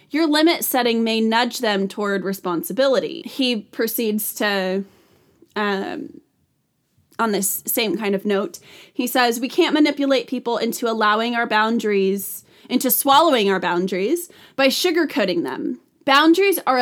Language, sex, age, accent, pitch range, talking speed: English, female, 20-39, American, 210-295 Hz, 130 wpm